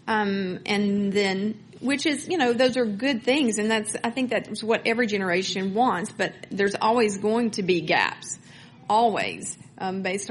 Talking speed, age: 175 wpm, 40-59